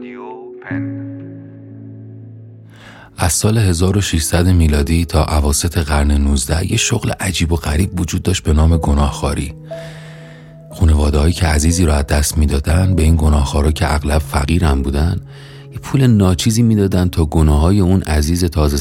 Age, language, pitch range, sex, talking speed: 30-49, Persian, 75-100 Hz, male, 130 wpm